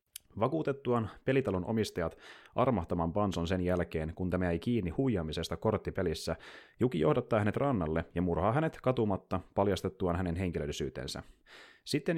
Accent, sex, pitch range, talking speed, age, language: native, male, 85-115 Hz, 125 wpm, 30-49, Finnish